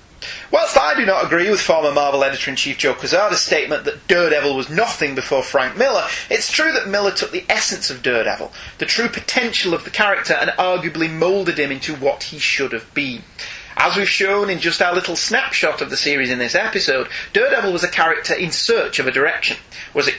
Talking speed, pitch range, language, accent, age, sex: 205 wpm, 135-200 Hz, English, British, 30-49, male